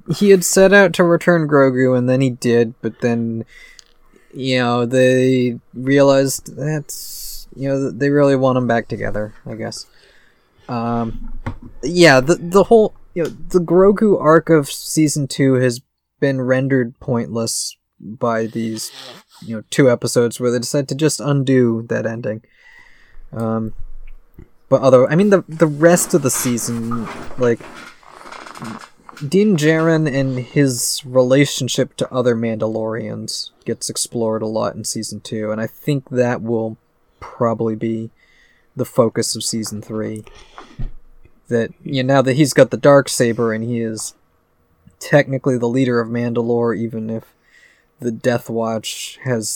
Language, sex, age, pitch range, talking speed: English, male, 20-39, 115-145 Hz, 145 wpm